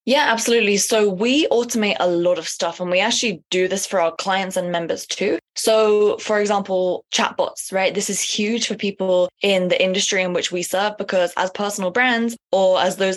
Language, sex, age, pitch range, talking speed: English, female, 20-39, 180-215 Hz, 200 wpm